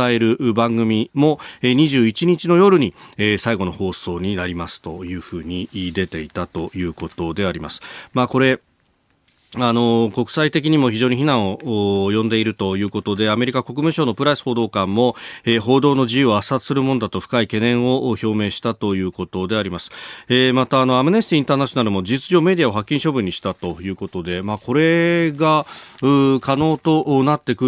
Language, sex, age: Japanese, male, 40-59